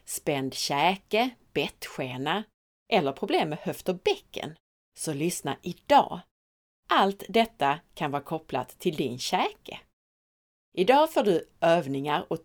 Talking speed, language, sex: 120 wpm, Swedish, female